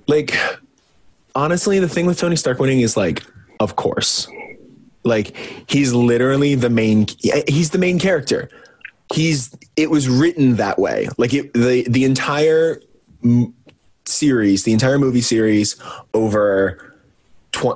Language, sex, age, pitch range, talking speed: English, male, 20-39, 105-135 Hz, 130 wpm